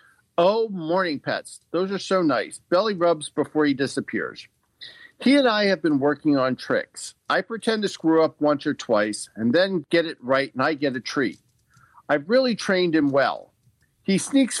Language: English